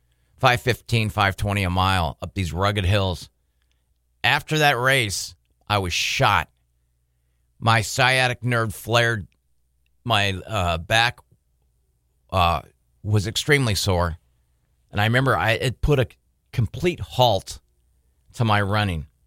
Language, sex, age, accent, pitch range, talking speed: English, male, 40-59, American, 70-120 Hz, 115 wpm